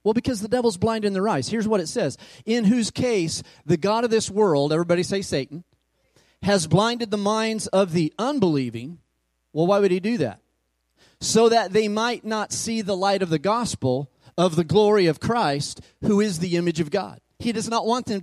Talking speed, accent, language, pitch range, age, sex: 205 wpm, American, English, 155-215 Hz, 40-59, male